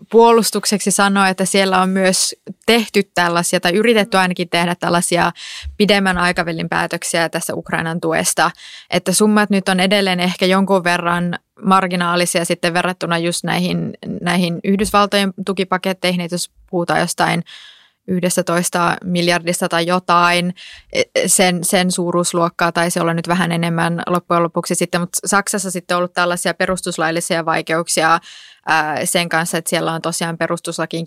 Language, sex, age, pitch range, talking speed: Finnish, female, 20-39, 170-195 Hz, 135 wpm